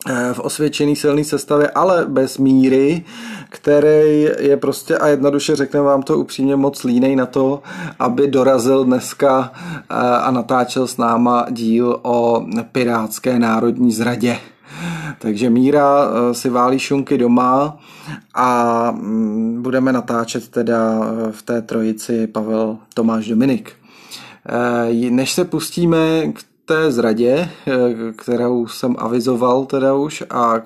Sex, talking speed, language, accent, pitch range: male, 115 wpm, Czech, native, 120-145 Hz